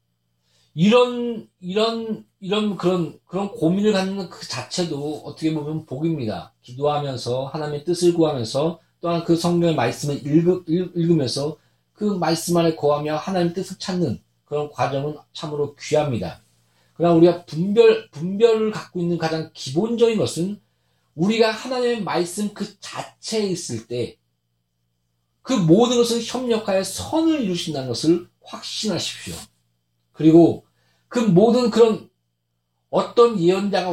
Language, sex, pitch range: Korean, male, 145-200 Hz